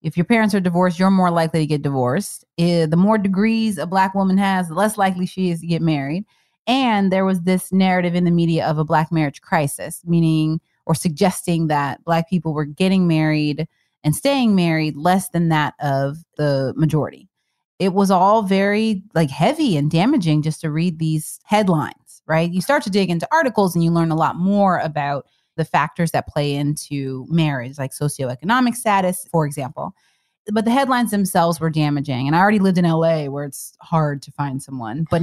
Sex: female